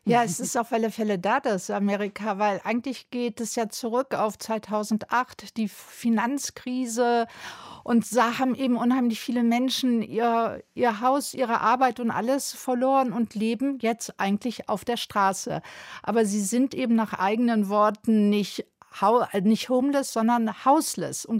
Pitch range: 215-250 Hz